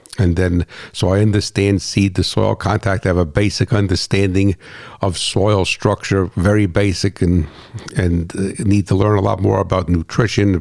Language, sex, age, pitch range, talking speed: English, male, 60-79, 95-115 Hz, 165 wpm